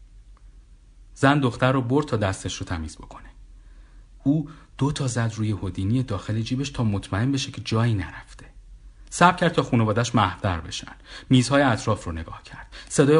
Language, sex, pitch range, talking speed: Persian, male, 100-135 Hz, 155 wpm